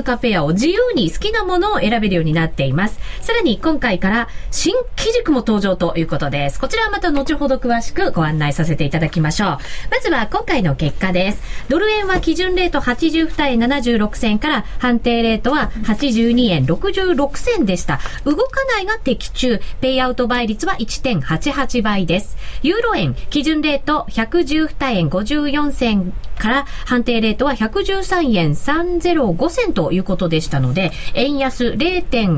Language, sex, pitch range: Japanese, female, 195-310 Hz